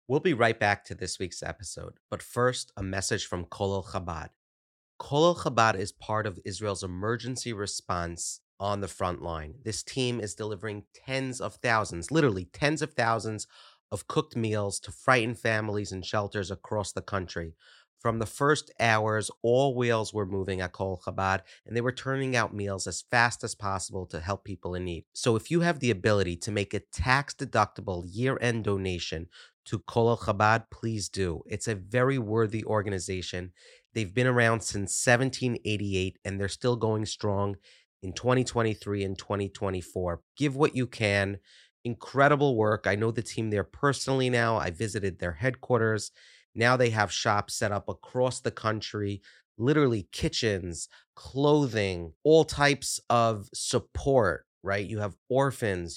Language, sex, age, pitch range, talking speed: English, male, 30-49, 95-120 Hz, 160 wpm